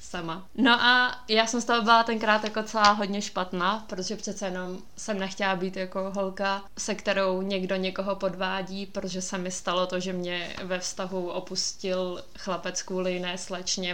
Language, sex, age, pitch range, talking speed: Czech, female, 20-39, 195-235 Hz, 170 wpm